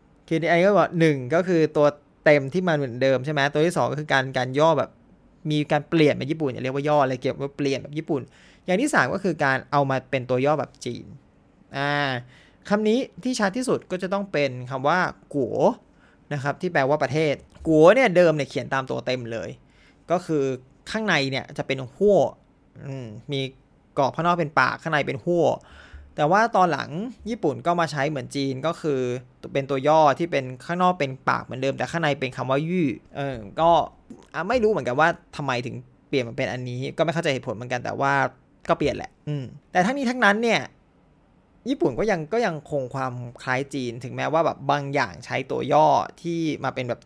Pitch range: 130-165 Hz